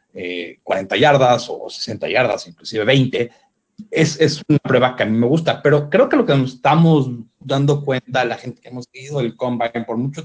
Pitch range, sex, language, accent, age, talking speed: 120-155 Hz, male, Spanish, Mexican, 40-59, 205 wpm